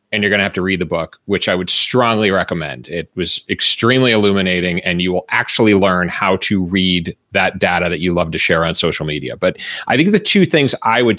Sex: male